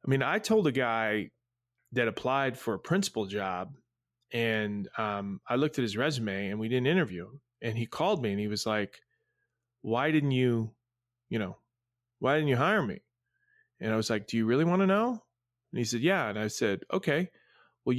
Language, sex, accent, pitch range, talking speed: English, male, American, 115-145 Hz, 205 wpm